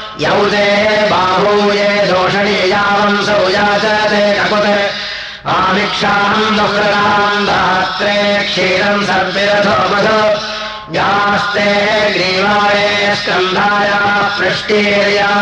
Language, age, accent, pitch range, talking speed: Russian, 30-49, Indian, 200-205 Hz, 65 wpm